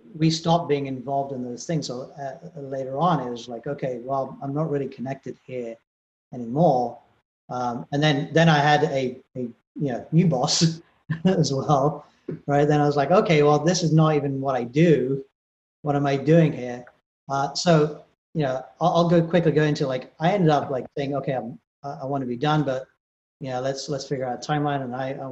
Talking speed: 215 wpm